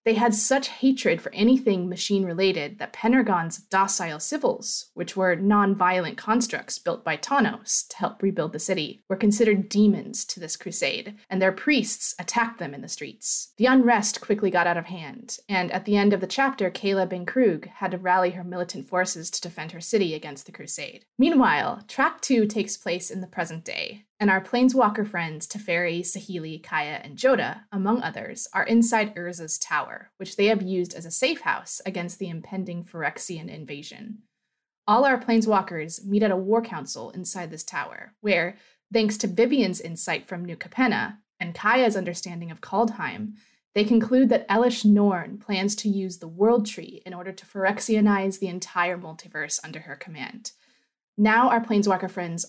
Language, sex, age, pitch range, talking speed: English, female, 20-39, 175-225 Hz, 175 wpm